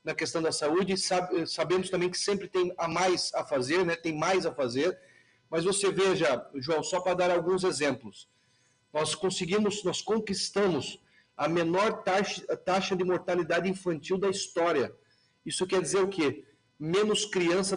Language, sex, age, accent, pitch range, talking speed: Portuguese, male, 40-59, Brazilian, 165-195 Hz, 160 wpm